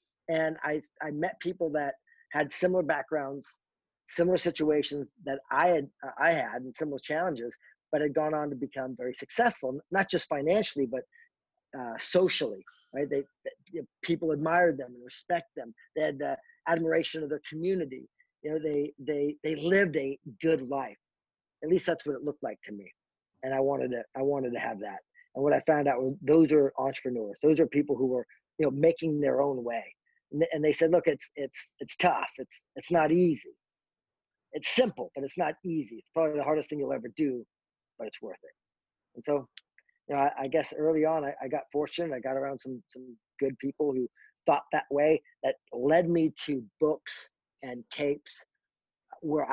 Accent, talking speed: American, 195 wpm